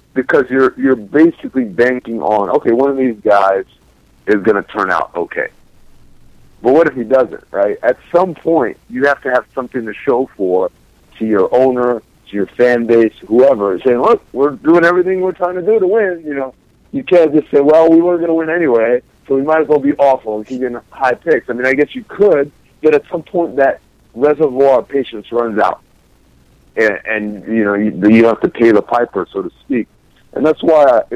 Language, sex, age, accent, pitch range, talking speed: English, male, 60-79, American, 115-150 Hz, 215 wpm